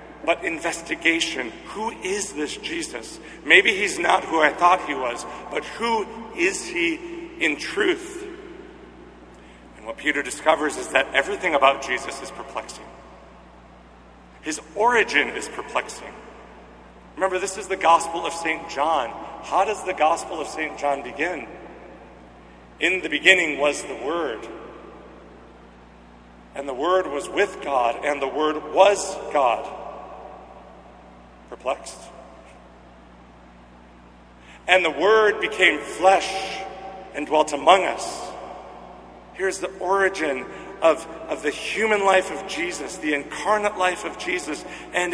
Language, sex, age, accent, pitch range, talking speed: English, male, 50-69, American, 140-205 Hz, 125 wpm